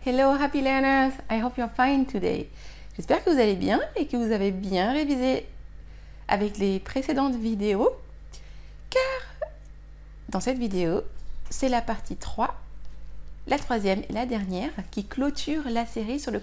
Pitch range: 205-270 Hz